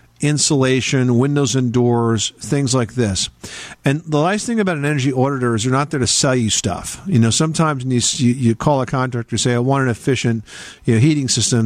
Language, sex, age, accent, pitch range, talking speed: English, male, 50-69, American, 120-150 Hz, 215 wpm